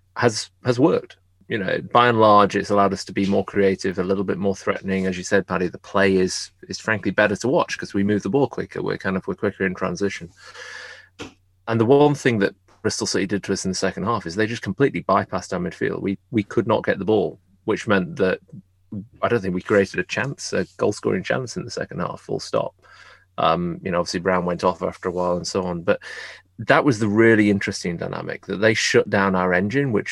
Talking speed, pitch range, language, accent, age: 240 wpm, 90-105 Hz, English, British, 30-49